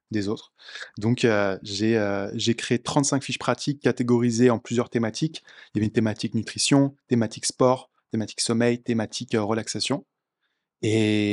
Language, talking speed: French, 155 wpm